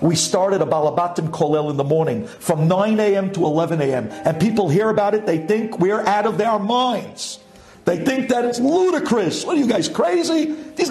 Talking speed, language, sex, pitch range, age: 205 wpm, English, male, 150-215 Hz, 50-69